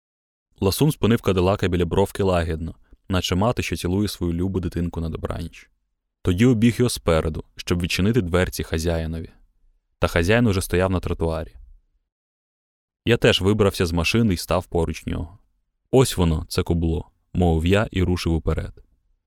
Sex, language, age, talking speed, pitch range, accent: male, Ukrainian, 20-39, 145 wpm, 85-105 Hz, native